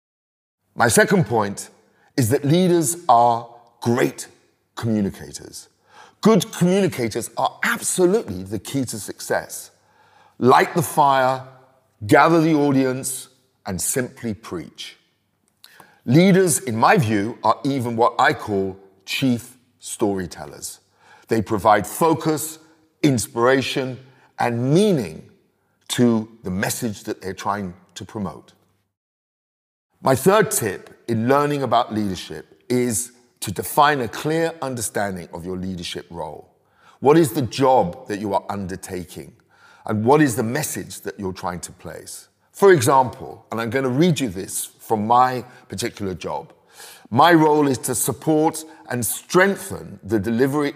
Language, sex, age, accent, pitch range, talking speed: English, male, 50-69, British, 110-150 Hz, 130 wpm